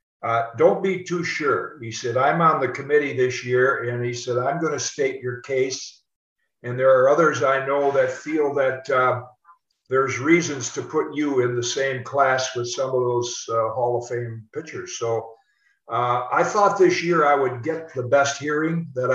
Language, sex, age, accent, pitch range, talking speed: English, male, 60-79, American, 125-145 Hz, 195 wpm